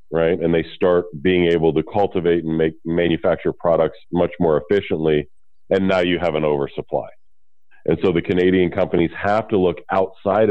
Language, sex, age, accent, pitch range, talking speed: English, male, 40-59, American, 80-100 Hz, 170 wpm